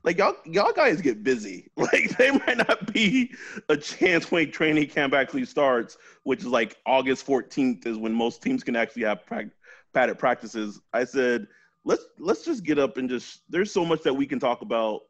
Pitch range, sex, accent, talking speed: 105-140 Hz, male, American, 200 wpm